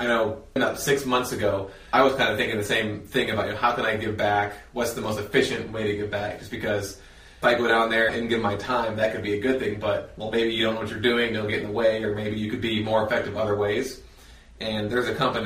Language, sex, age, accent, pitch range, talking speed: English, male, 20-39, American, 105-115 Hz, 290 wpm